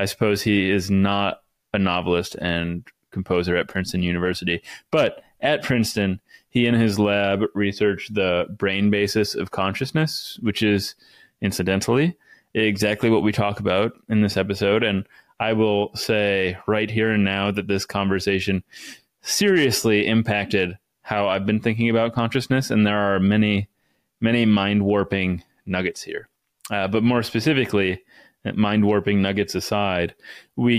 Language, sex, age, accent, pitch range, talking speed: English, male, 20-39, American, 95-110 Hz, 140 wpm